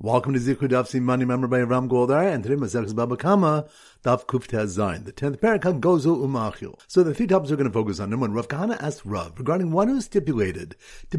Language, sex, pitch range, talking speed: English, male, 125-175 Hz, 195 wpm